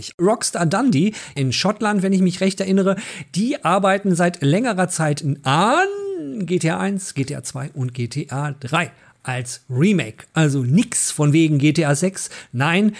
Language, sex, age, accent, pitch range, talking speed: German, male, 40-59, German, 135-185 Hz, 145 wpm